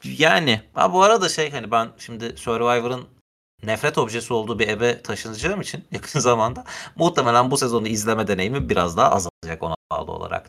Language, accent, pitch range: Turkish, native, 105-135 Hz